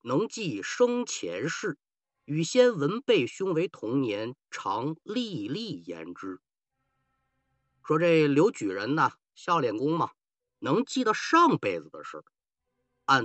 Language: Chinese